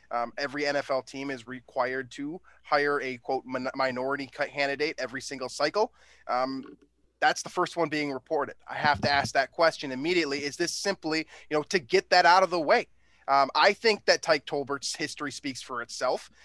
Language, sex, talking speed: English, male, 185 wpm